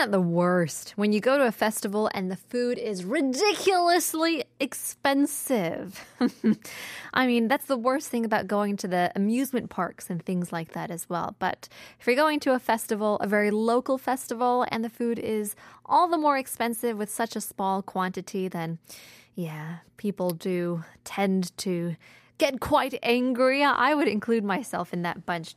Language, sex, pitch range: Korean, female, 190-255 Hz